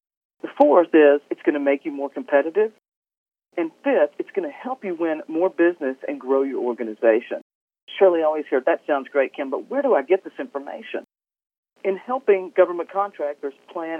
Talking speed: 185 wpm